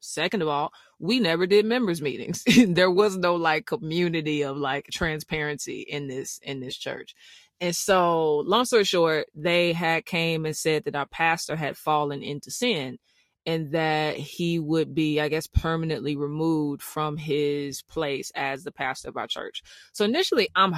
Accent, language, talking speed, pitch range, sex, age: American, English, 170 wpm, 150-180 Hz, female, 20-39